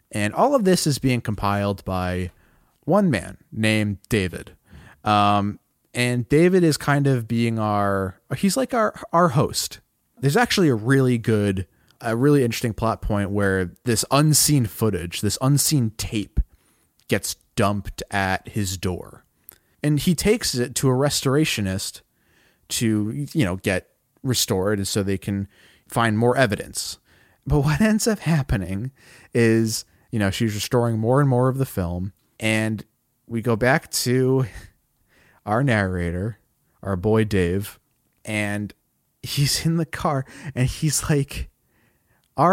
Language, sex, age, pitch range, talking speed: English, male, 30-49, 100-135 Hz, 145 wpm